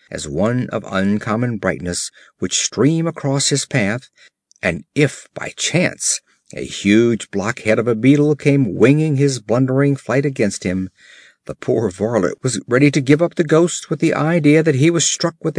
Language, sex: Korean, male